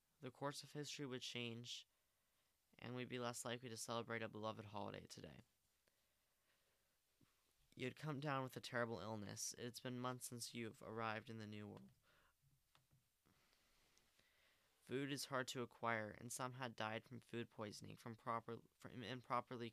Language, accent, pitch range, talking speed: English, American, 115-130 Hz, 150 wpm